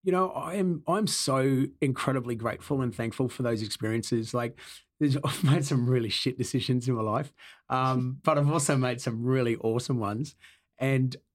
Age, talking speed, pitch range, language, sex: 30-49, 175 wpm, 115-135 Hz, English, male